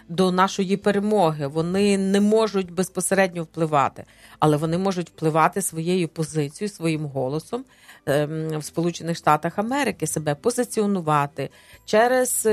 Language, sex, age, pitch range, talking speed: Ukrainian, female, 40-59, 160-215 Hz, 100 wpm